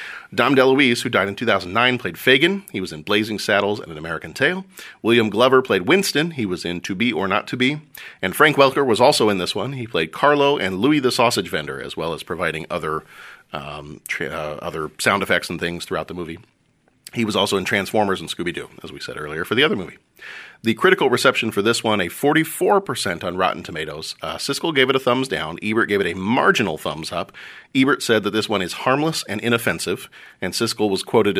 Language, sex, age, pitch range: English, male, 40-59, 95-125 Hz